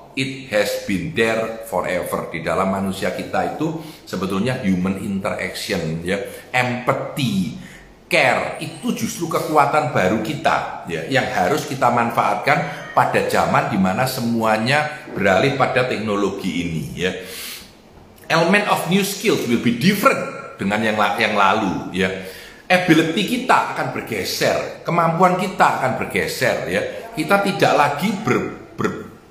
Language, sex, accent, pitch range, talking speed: Indonesian, male, native, 110-165 Hz, 125 wpm